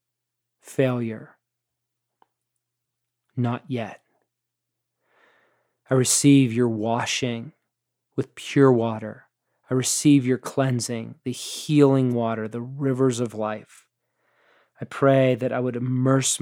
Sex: male